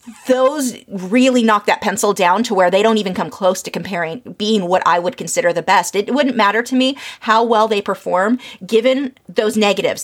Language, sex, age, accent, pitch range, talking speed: English, female, 30-49, American, 185-245 Hz, 205 wpm